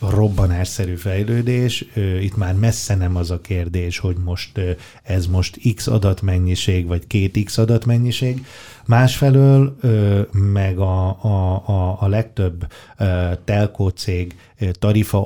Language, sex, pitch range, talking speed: Hungarian, male, 95-115 Hz, 120 wpm